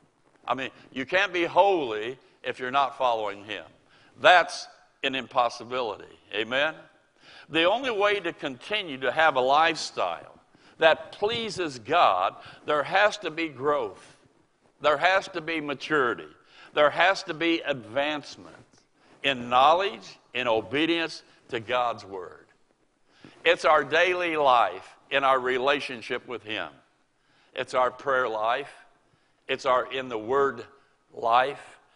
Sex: male